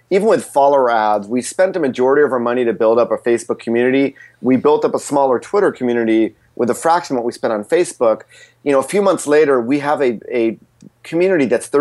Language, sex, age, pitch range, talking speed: English, male, 30-49, 115-150 Hz, 230 wpm